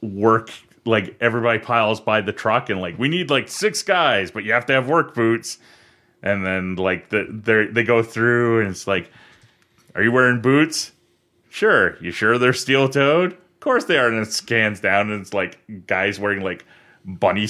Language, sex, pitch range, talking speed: English, male, 110-140 Hz, 190 wpm